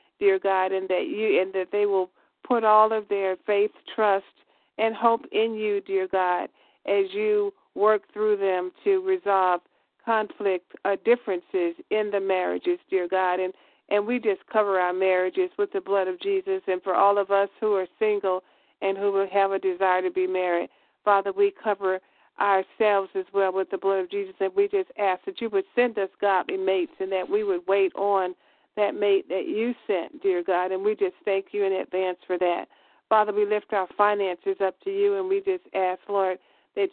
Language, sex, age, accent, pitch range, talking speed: English, female, 50-69, American, 190-220 Hz, 200 wpm